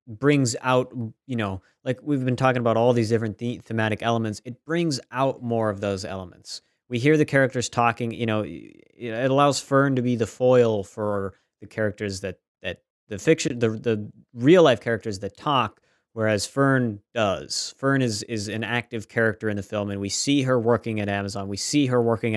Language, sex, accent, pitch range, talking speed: English, male, American, 105-125 Hz, 190 wpm